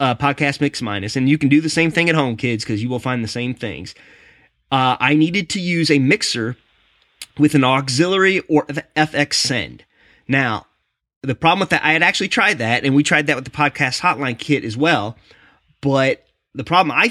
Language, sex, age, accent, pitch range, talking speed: English, male, 30-49, American, 125-155 Hz, 205 wpm